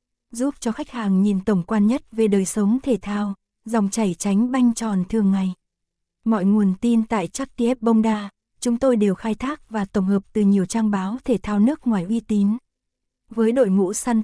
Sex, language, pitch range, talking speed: female, Vietnamese, 200-235 Hz, 210 wpm